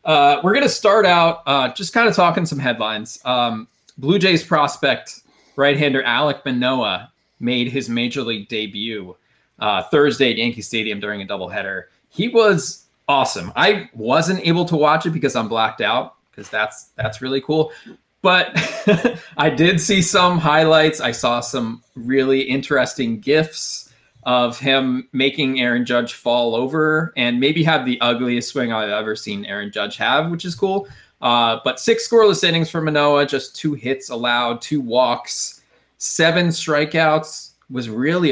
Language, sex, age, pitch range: English, male, 20-39, 115-155 Hz